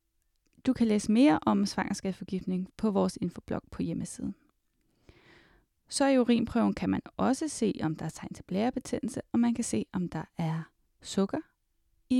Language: Danish